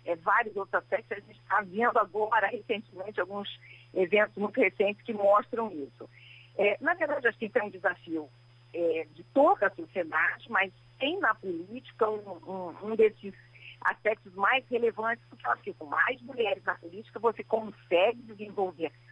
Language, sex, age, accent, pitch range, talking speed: Portuguese, female, 50-69, Brazilian, 170-240 Hz, 145 wpm